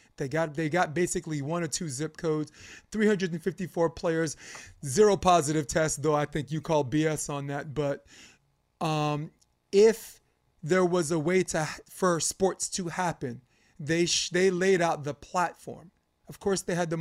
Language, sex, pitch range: English, male, 140-180 Hz